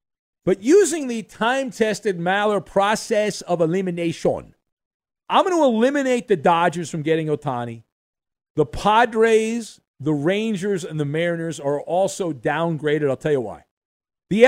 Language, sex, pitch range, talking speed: English, male, 140-195 Hz, 135 wpm